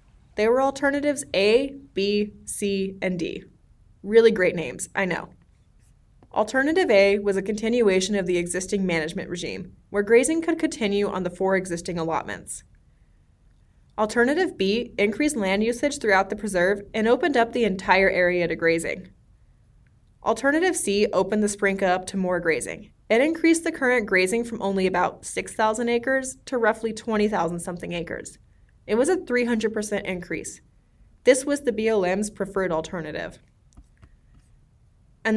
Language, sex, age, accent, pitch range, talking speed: English, female, 20-39, American, 185-240 Hz, 145 wpm